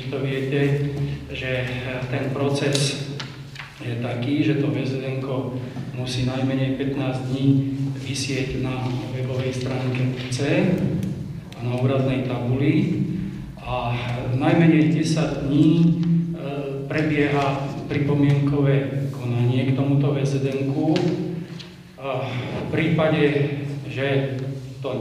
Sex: male